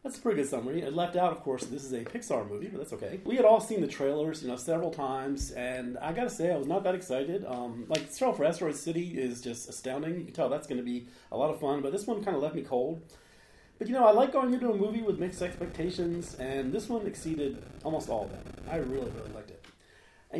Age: 40-59